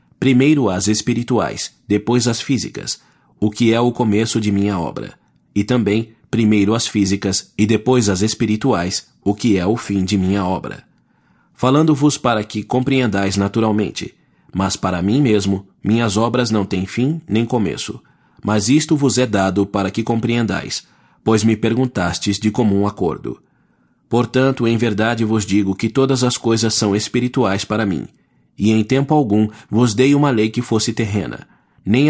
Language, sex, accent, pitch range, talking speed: English, male, Brazilian, 100-125 Hz, 160 wpm